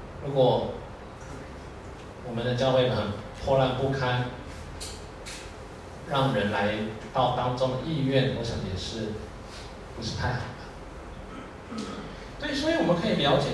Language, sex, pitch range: Chinese, male, 110-160 Hz